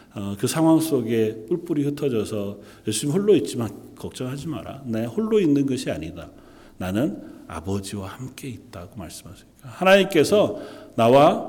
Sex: male